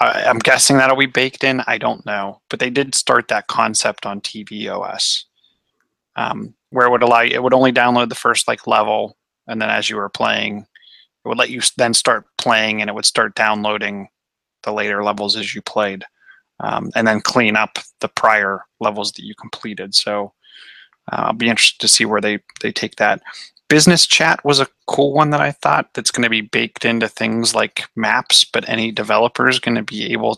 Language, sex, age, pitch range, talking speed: English, male, 30-49, 105-135 Hz, 205 wpm